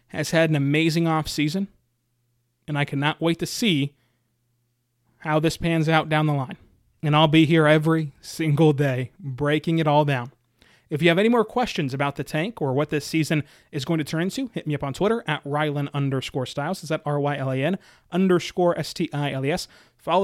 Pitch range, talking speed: 145-180 Hz, 185 wpm